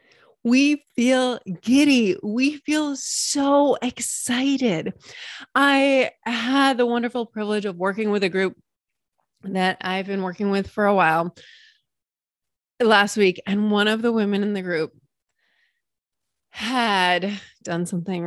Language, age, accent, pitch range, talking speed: English, 30-49, American, 185-255 Hz, 125 wpm